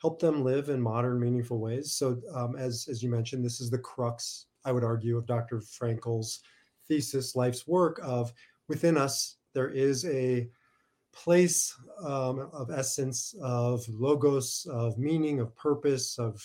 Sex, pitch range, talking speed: male, 120-150 Hz, 155 wpm